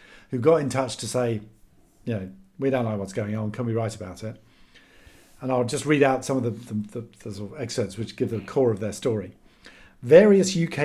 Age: 50-69